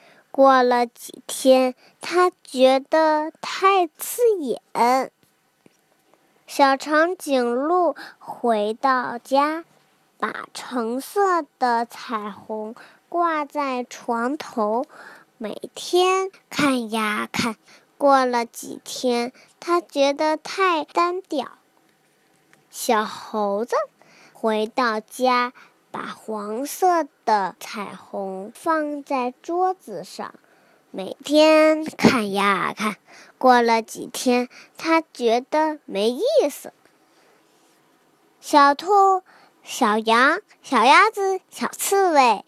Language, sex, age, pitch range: Chinese, male, 20-39, 235-320 Hz